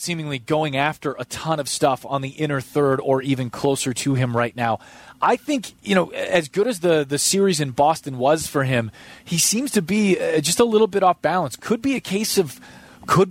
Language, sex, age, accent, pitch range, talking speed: English, male, 30-49, American, 130-170 Hz, 220 wpm